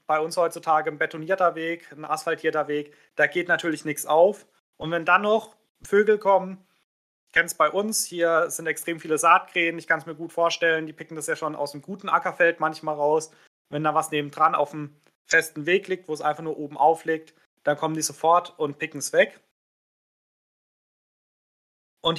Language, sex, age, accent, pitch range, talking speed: German, male, 30-49, German, 155-180 Hz, 190 wpm